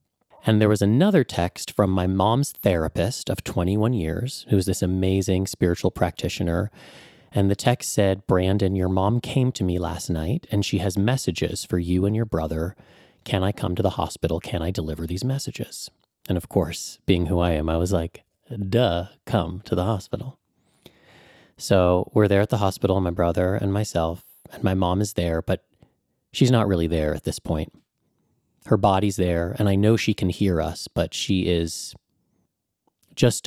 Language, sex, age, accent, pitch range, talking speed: English, male, 30-49, American, 85-105 Hz, 180 wpm